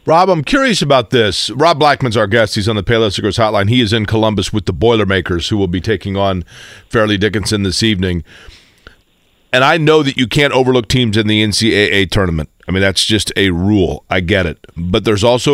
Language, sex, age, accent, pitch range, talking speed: English, male, 40-59, American, 105-125 Hz, 210 wpm